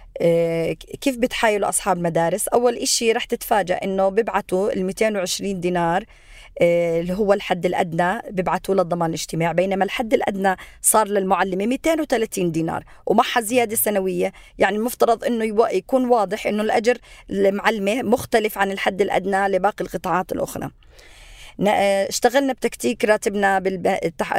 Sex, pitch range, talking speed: female, 175-215 Hz, 120 wpm